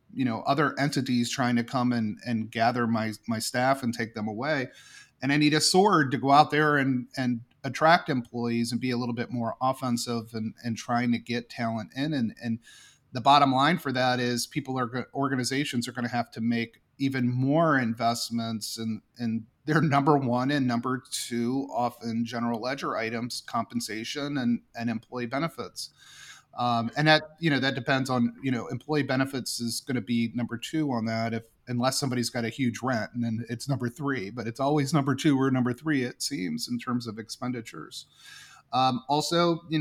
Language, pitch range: English, 115-135 Hz